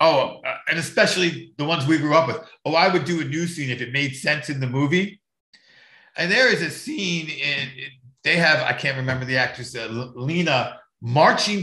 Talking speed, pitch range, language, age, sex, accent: 210 wpm, 140-185 Hz, English, 50-69, male, American